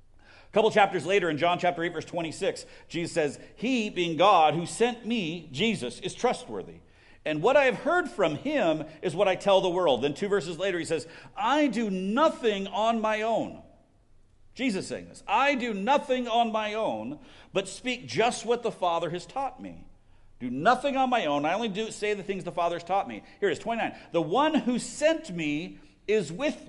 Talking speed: 205 wpm